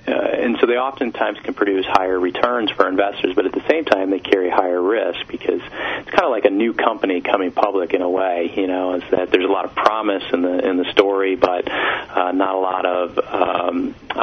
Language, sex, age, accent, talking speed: English, male, 40-59, American, 230 wpm